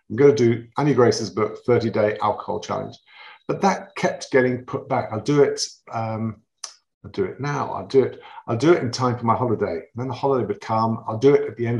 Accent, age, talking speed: British, 50-69, 245 wpm